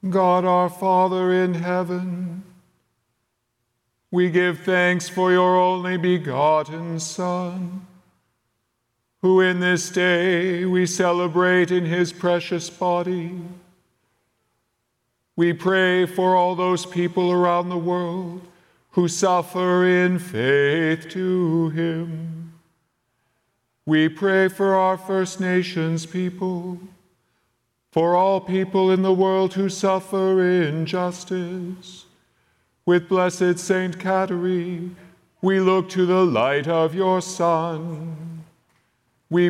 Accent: American